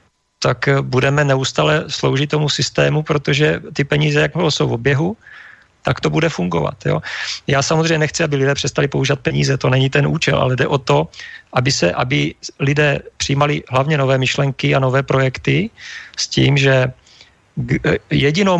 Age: 40-59